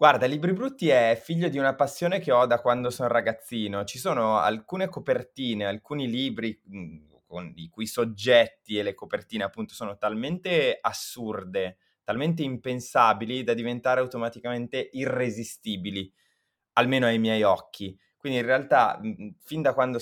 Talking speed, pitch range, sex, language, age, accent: 140 wpm, 110-155 Hz, male, Italian, 20-39, native